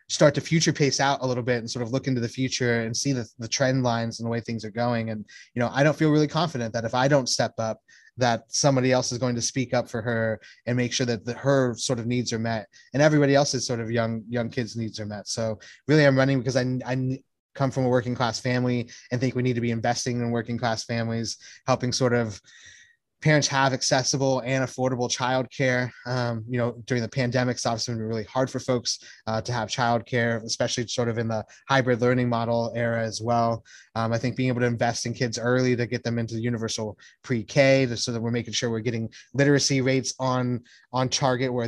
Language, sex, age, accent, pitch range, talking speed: English, male, 20-39, American, 115-130 Hz, 240 wpm